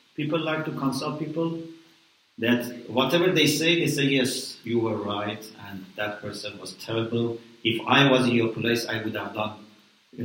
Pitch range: 115-165 Hz